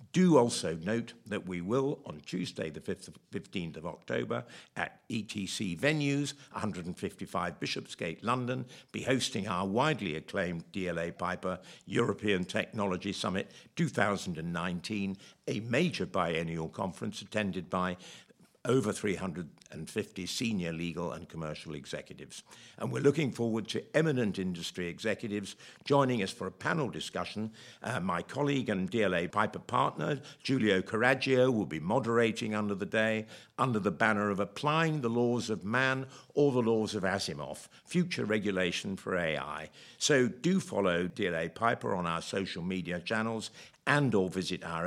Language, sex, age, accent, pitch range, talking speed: English, male, 60-79, British, 90-130 Hz, 140 wpm